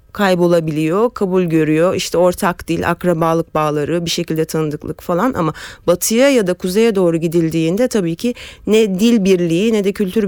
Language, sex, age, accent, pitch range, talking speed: Turkish, female, 40-59, native, 170-255 Hz, 160 wpm